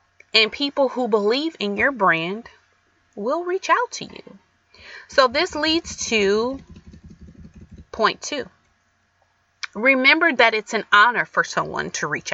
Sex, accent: female, American